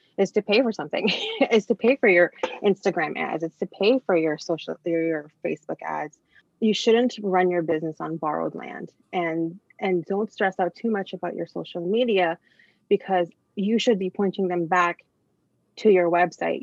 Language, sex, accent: English, female, American